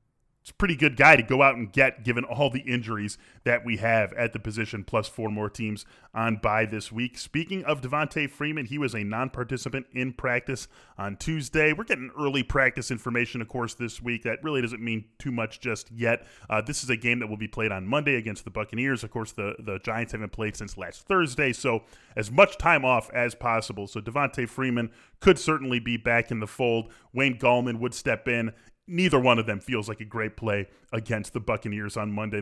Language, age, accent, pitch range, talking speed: English, 20-39, American, 115-145 Hz, 215 wpm